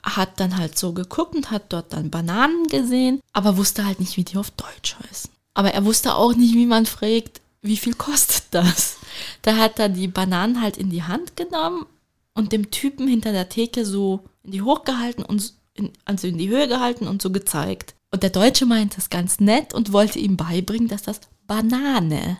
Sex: female